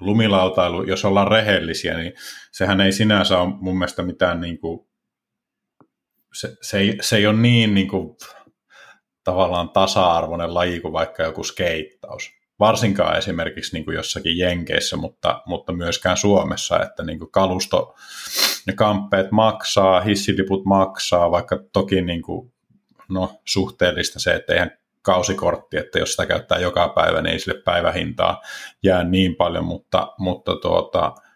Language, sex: Finnish, male